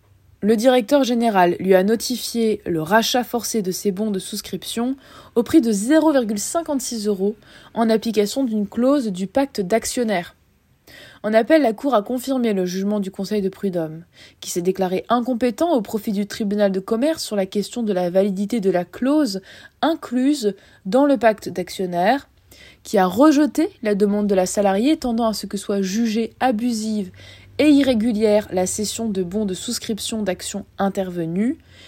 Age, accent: 20-39, French